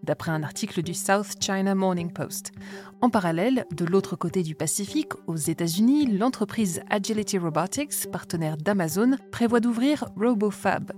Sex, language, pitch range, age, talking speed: female, French, 175-220 Hz, 20-39, 140 wpm